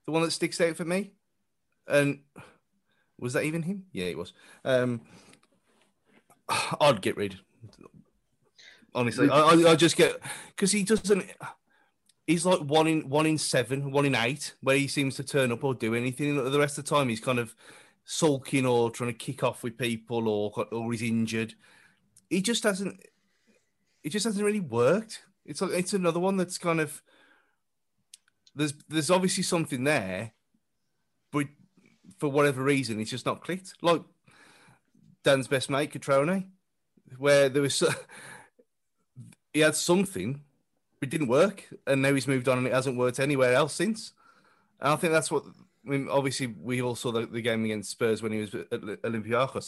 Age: 30-49